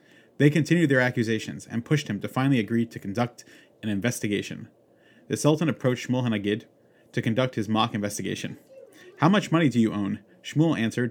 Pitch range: 110-135 Hz